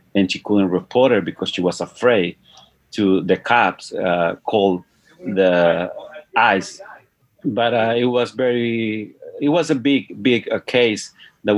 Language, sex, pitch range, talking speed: English, male, 100-120 Hz, 150 wpm